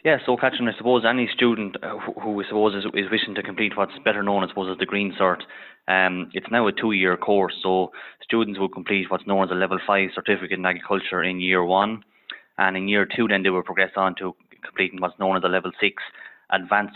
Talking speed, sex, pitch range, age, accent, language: 230 wpm, male, 90-100 Hz, 20-39, Irish, English